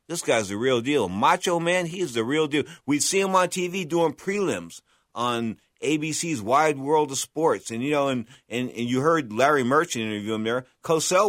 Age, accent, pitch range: 50-69, American, 105-155 Hz